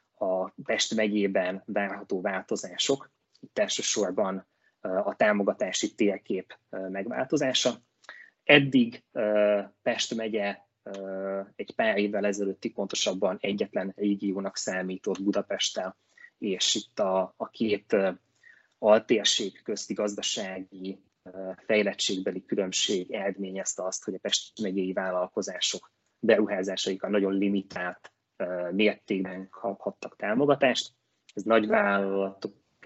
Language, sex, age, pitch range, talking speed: Hungarian, male, 20-39, 95-100 Hz, 90 wpm